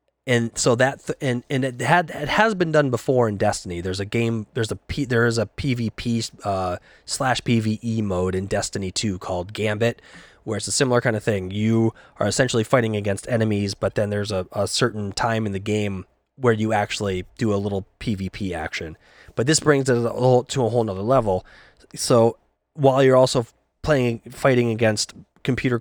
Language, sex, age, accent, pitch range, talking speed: English, male, 20-39, American, 100-120 Hz, 190 wpm